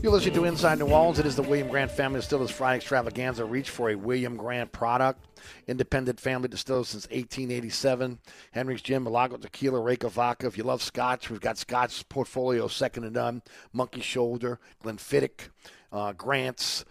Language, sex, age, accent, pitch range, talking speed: English, male, 50-69, American, 115-145 Hz, 165 wpm